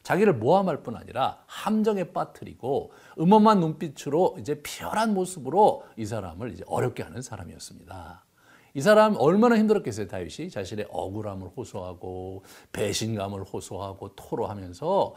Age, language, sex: 50-69, Korean, male